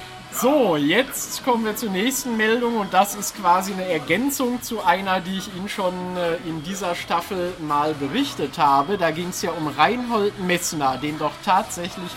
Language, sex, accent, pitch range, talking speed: German, male, German, 150-190 Hz, 175 wpm